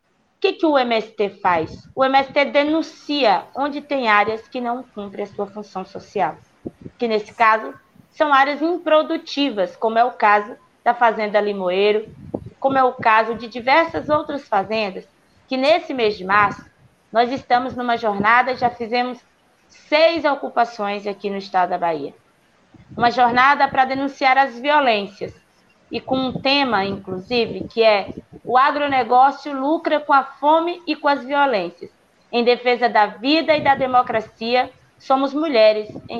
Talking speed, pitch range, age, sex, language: 150 wpm, 215-280 Hz, 20-39, female, Portuguese